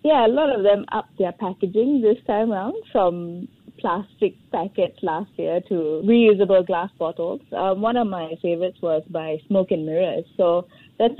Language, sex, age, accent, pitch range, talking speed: English, female, 20-39, Indian, 185-225 Hz, 170 wpm